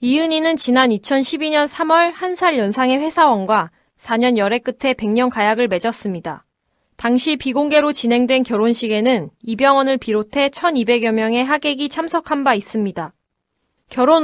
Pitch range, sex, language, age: 220-280 Hz, female, Korean, 20-39